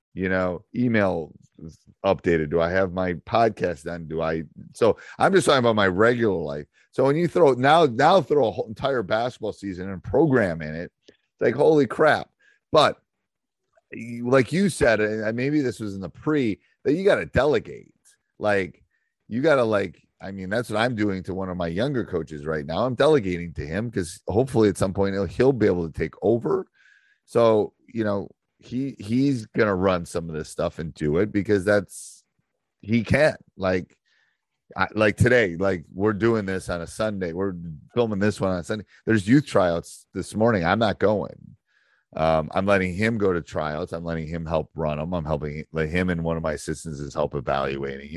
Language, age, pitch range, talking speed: English, 30-49, 80-110 Hz, 195 wpm